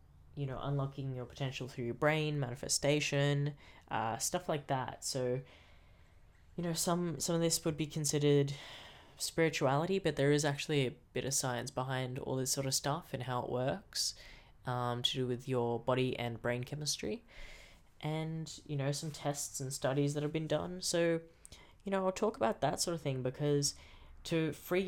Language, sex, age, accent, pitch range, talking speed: English, female, 10-29, Australian, 125-150 Hz, 180 wpm